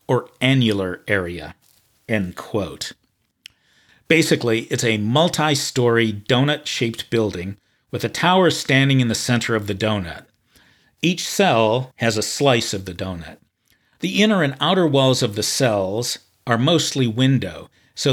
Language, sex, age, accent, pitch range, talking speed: English, male, 50-69, American, 105-135 Hz, 135 wpm